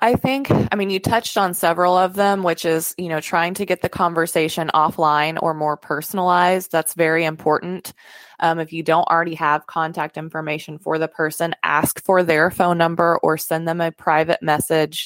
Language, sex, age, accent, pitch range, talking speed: English, female, 20-39, American, 160-185 Hz, 190 wpm